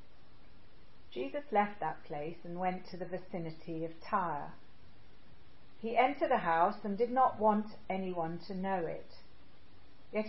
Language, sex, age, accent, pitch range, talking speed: English, female, 40-59, British, 170-220 Hz, 140 wpm